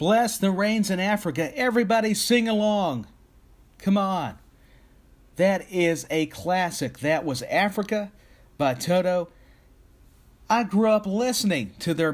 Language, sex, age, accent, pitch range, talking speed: English, male, 50-69, American, 130-180 Hz, 125 wpm